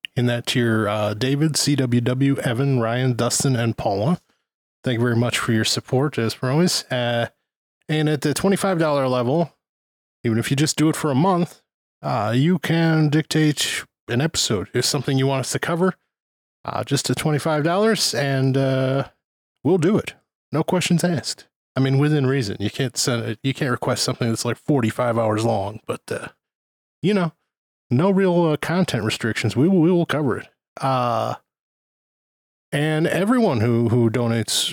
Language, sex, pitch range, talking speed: English, male, 120-150 Hz, 170 wpm